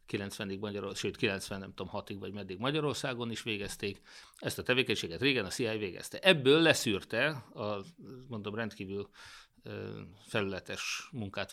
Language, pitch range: Hungarian, 100-120 Hz